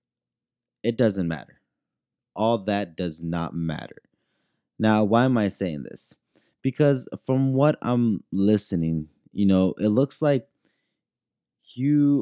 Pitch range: 95-120 Hz